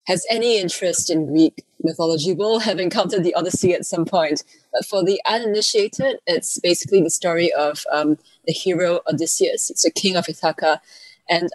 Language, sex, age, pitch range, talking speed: English, female, 20-39, 155-205 Hz, 165 wpm